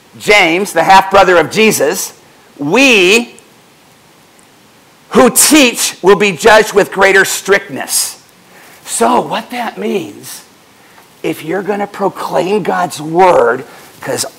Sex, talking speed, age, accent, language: male, 110 wpm, 50-69, American, English